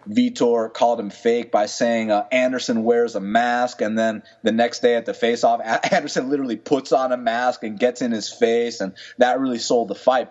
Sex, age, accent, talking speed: male, 30-49, American, 215 wpm